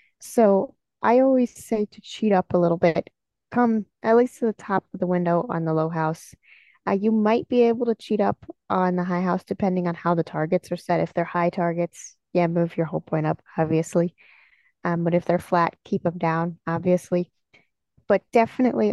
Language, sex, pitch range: English, female, 175-220 Hz